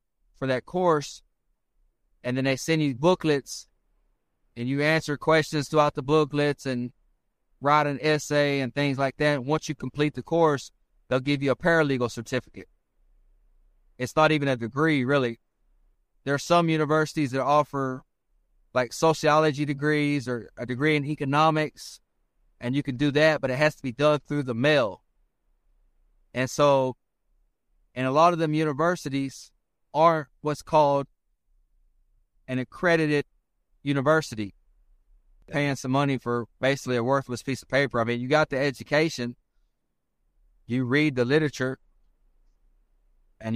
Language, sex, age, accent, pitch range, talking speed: Greek, male, 30-49, American, 120-150 Hz, 145 wpm